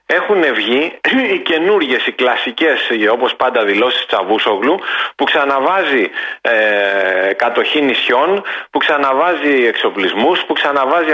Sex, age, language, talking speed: male, 40-59, Greek, 110 wpm